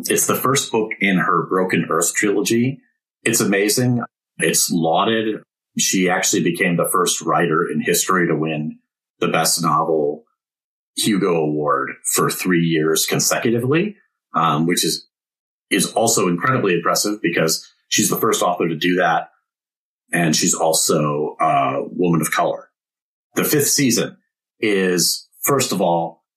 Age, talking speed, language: 40-59, 140 wpm, English